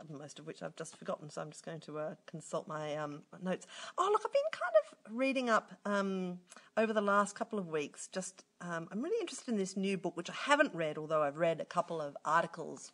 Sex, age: female, 40-59